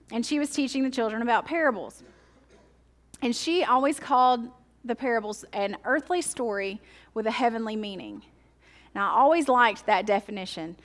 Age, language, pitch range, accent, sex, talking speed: 30-49, English, 215-270 Hz, American, female, 150 wpm